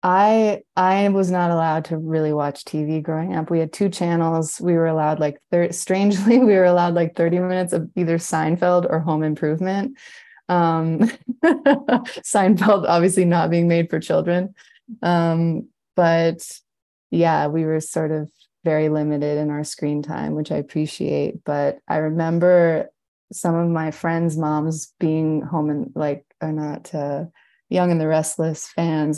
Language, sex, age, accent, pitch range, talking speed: English, female, 20-39, American, 155-185 Hz, 160 wpm